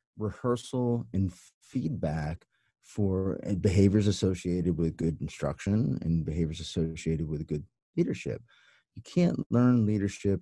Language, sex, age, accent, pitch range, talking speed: English, male, 30-49, American, 90-115 Hz, 110 wpm